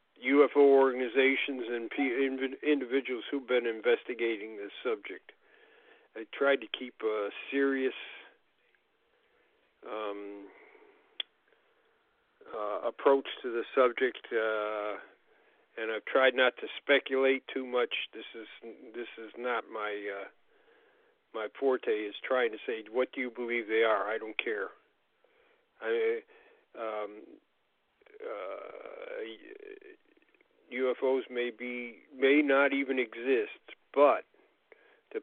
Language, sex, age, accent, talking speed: English, male, 50-69, American, 110 wpm